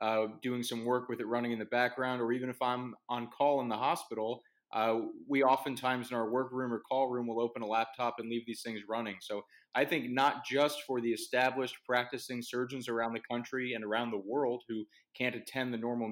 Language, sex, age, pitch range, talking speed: English, male, 20-39, 115-140 Hz, 220 wpm